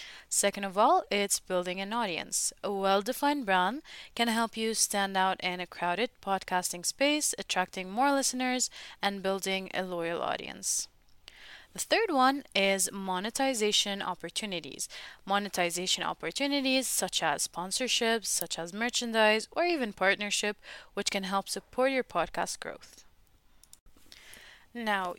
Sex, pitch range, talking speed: female, 185-255 Hz, 125 wpm